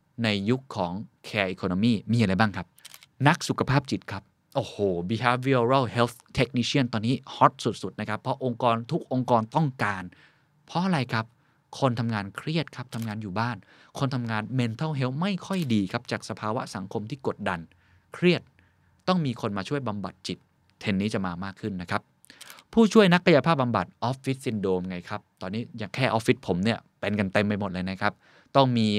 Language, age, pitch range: Thai, 20-39, 105-145 Hz